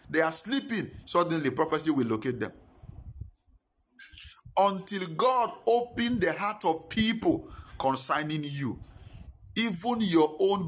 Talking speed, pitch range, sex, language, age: 110 wpm, 125-165 Hz, male, English, 50-69